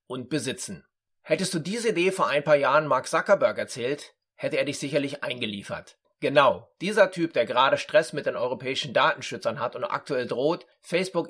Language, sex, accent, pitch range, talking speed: German, male, German, 140-195 Hz, 175 wpm